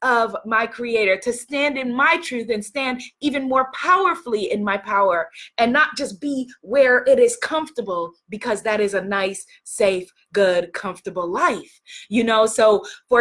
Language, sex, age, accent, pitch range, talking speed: English, female, 20-39, American, 215-315 Hz, 170 wpm